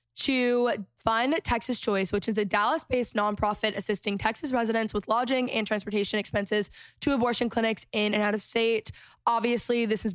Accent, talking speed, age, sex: American, 170 wpm, 10-29, female